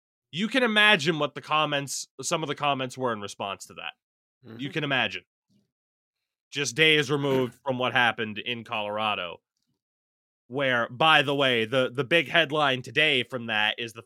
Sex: male